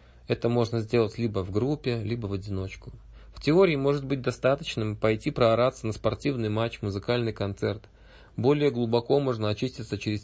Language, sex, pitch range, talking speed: Russian, male, 105-125 Hz, 150 wpm